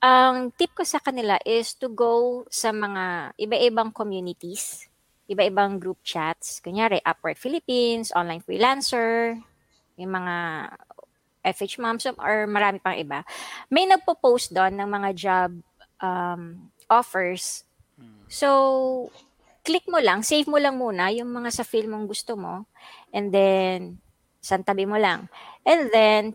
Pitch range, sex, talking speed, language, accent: 190-250 Hz, female, 130 wpm, Filipino, native